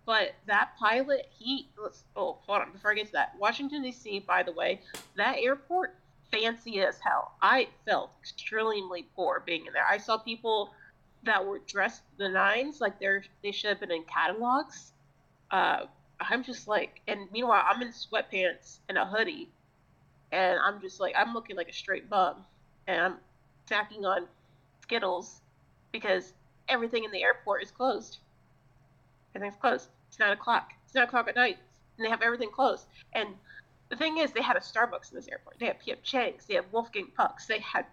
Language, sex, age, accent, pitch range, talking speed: English, female, 30-49, American, 200-260 Hz, 185 wpm